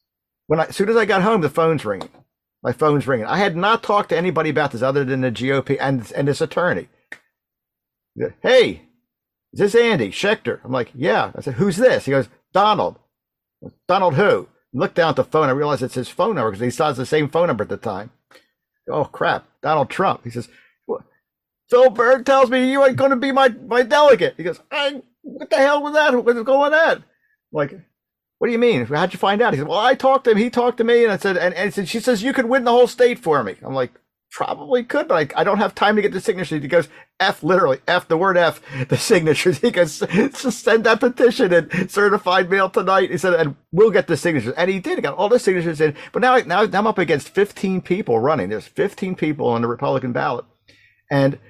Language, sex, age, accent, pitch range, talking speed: English, male, 50-69, American, 155-245 Hz, 240 wpm